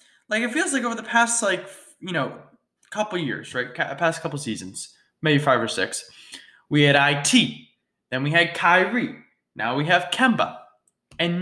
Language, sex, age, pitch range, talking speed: English, male, 20-39, 145-230 Hz, 170 wpm